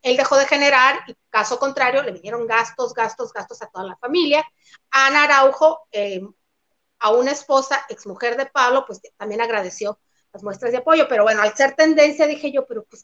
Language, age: Spanish, 40-59